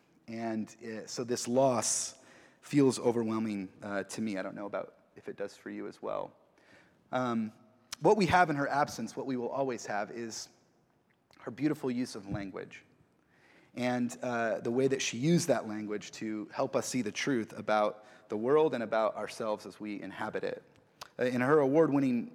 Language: English